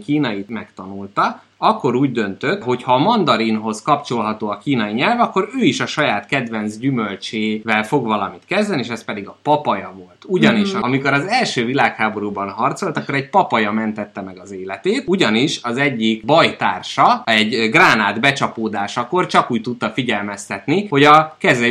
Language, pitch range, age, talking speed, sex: Hungarian, 110-140 Hz, 20-39, 155 wpm, male